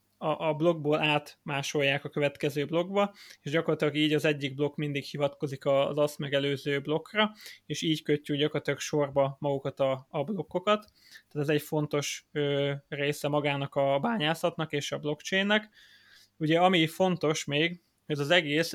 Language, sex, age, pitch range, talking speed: Hungarian, male, 20-39, 145-160 Hz, 150 wpm